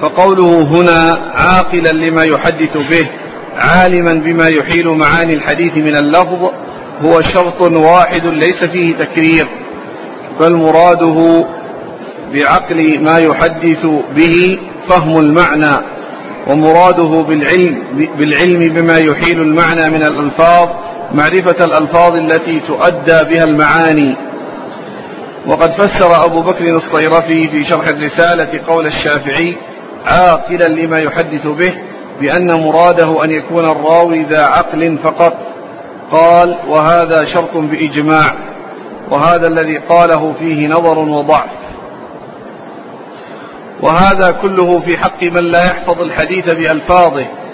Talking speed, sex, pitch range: 105 wpm, male, 160-170 Hz